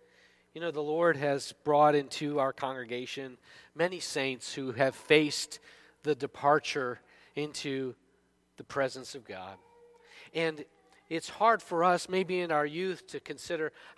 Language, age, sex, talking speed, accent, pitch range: English, 40-59, male, 135 wpm, American, 110-155 Hz